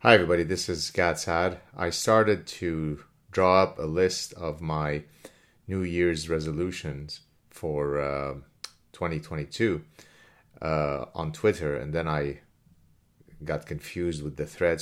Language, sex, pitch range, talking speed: English, male, 75-95 Hz, 125 wpm